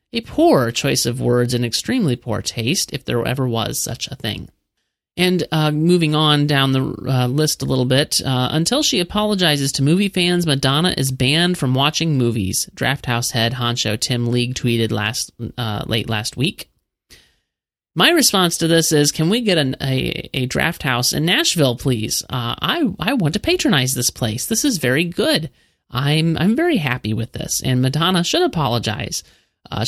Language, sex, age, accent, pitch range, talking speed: English, male, 30-49, American, 120-165 Hz, 180 wpm